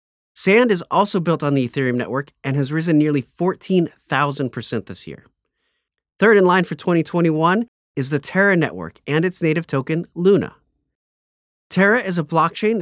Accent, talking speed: American, 155 wpm